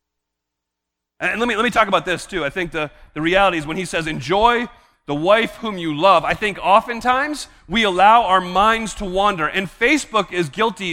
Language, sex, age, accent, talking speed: English, male, 30-49, American, 205 wpm